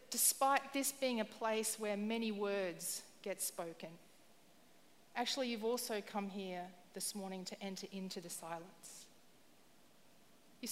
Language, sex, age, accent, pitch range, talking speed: English, female, 40-59, Australian, 205-250 Hz, 130 wpm